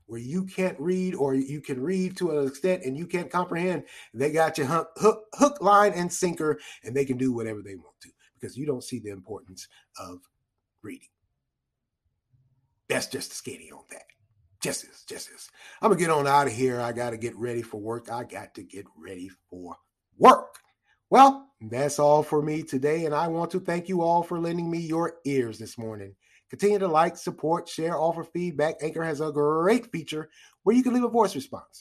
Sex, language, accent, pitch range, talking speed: male, English, American, 130-185 Hz, 210 wpm